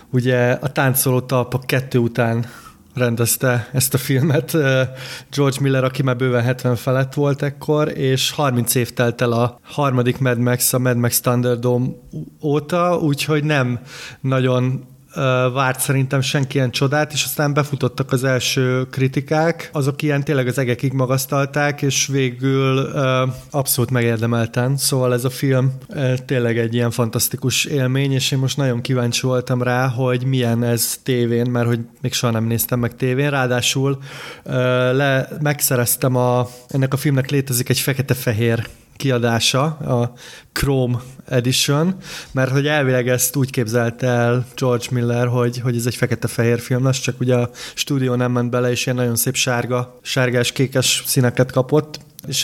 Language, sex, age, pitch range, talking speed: Hungarian, male, 30-49, 125-135 Hz, 150 wpm